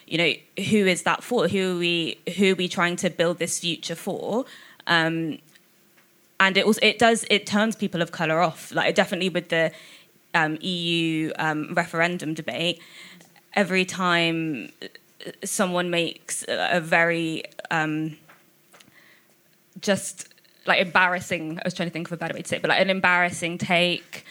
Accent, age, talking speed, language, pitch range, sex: British, 20-39, 160 wpm, English, 160-185 Hz, female